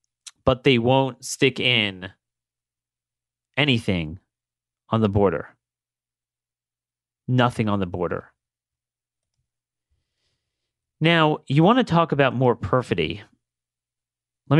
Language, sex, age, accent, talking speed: English, male, 30-49, American, 90 wpm